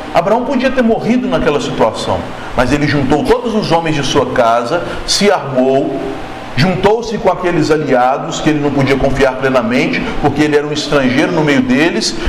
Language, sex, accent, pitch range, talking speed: Portuguese, male, Brazilian, 145-195 Hz, 170 wpm